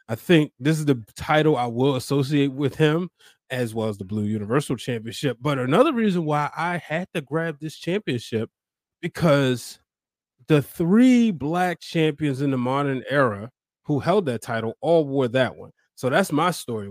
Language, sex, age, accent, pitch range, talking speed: English, male, 20-39, American, 125-160 Hz, 175 wpm